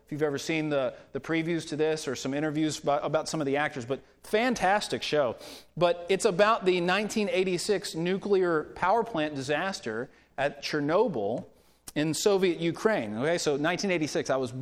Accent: American